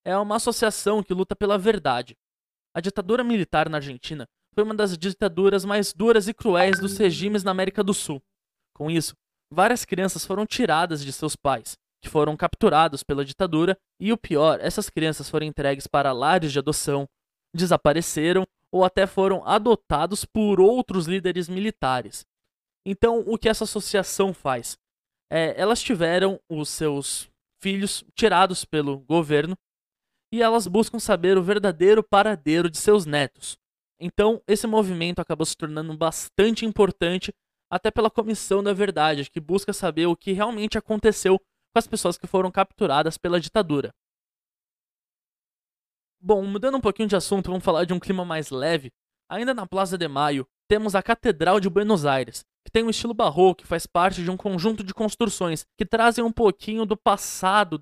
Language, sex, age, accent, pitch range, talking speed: Portuguese, male, 20-39, Brazilian, 160-210 Hz, 160 wpm